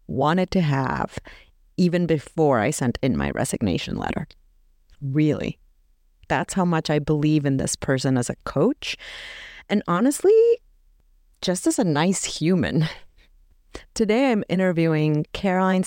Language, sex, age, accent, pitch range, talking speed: English, female, 30-49, American, 140-185 Hz, 130 wpm